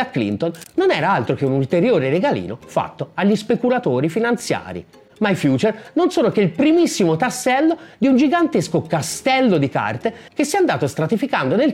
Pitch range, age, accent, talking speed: 165-275 Hz, 30-49, native, 170 wpm